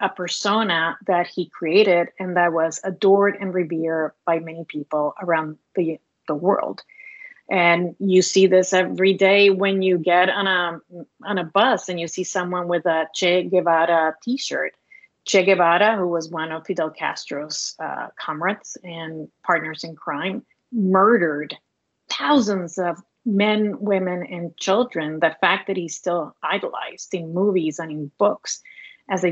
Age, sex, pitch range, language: 30-49, female, 170-205 Hz, English